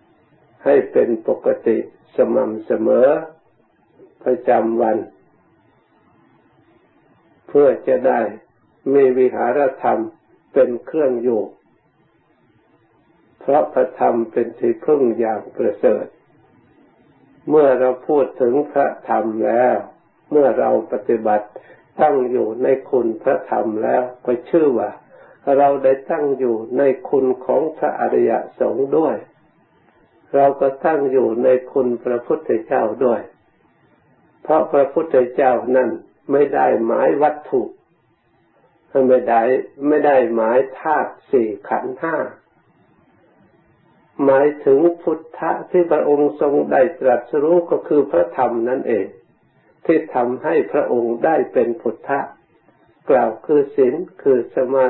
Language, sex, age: Thai, male, 60-79